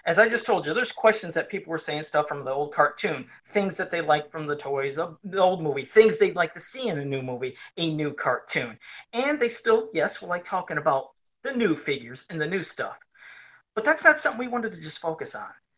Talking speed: 245 wpm